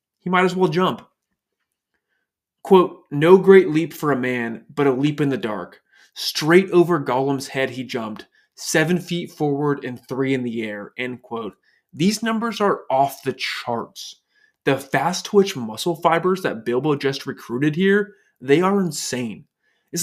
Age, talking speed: 20-39, 160 wpm